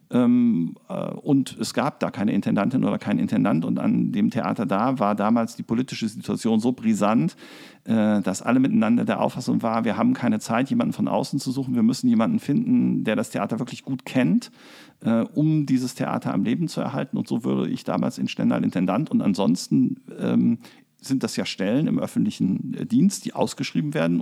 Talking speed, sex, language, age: 180 wpm, male, German, 50-69